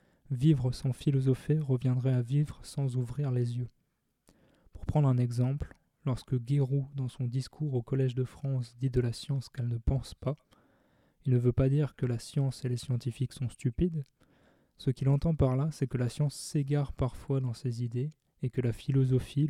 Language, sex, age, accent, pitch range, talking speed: French, male, 20-39, French, 125-140 Hz, 190 wpm